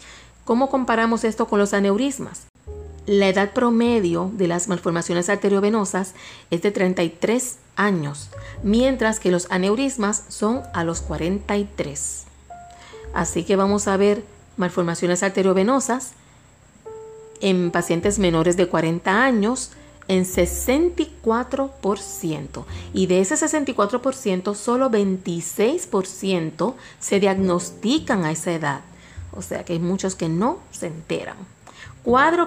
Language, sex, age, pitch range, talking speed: Spanish, female, 40-59, 175-235 Hz, 115 wpm